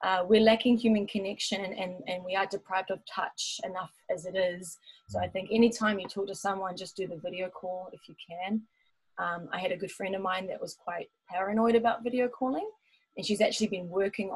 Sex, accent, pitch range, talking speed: female, Australian, 185-235 Hz, 215 wpm